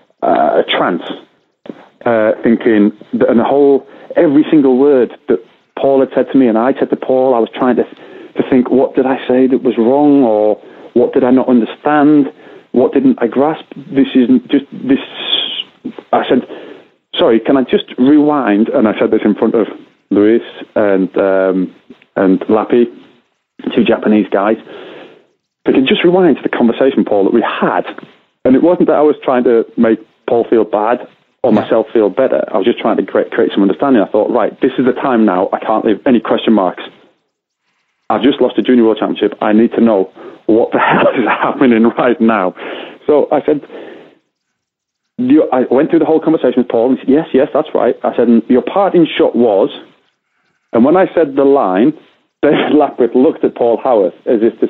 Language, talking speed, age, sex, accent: English, 200 wpm, 30-49, male, British